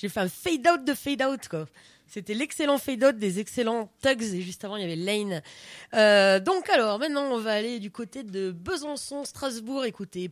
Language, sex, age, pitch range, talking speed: French, female, 20-39, 170-260 Hz, 190 wpm